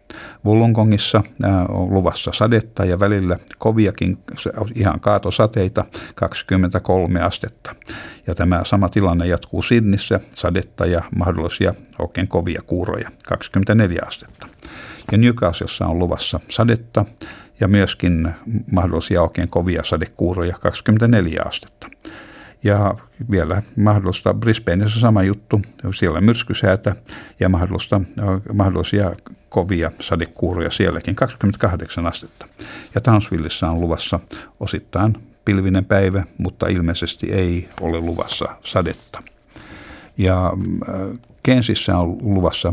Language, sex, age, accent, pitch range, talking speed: Finnish, male, 60-79, native, 85-105 Hz, 100 wpm